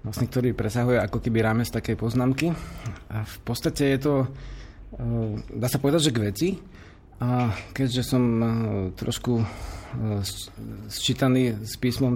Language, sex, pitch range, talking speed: Slovak, male, 115-135 Hz, 135 wpm